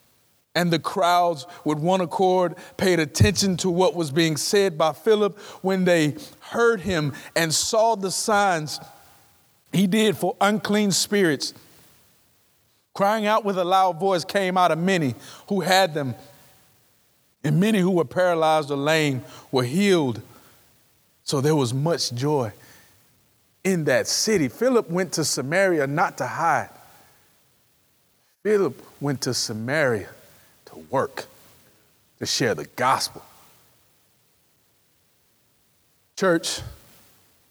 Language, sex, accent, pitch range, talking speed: English, male, American, 140-190 Hz, 120 wpm